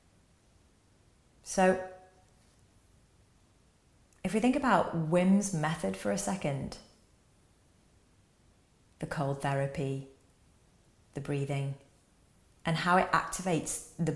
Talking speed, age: 85 wpm, 30-49